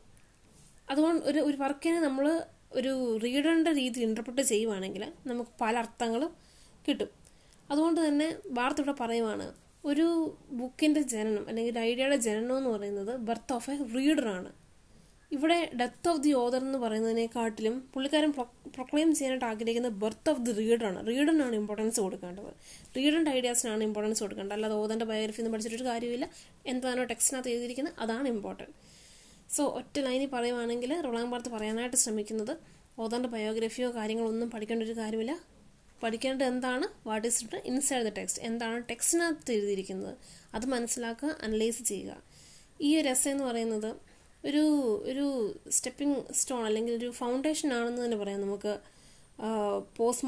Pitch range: 225-270 Hz